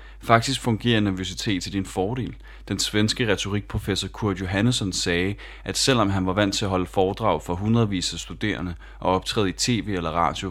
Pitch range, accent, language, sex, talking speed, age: 90-110 Hz, native, Danish, male, 175 wpm, 30-49